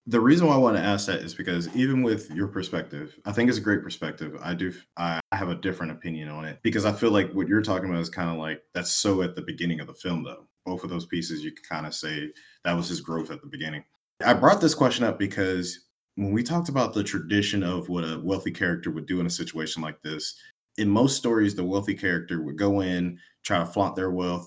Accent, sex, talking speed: American, male, 255 wpm